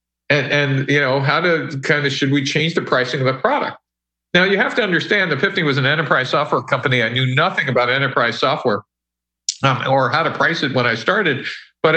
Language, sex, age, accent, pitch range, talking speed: English, male, 50-69, American, 125-180 Hz, 220 wpm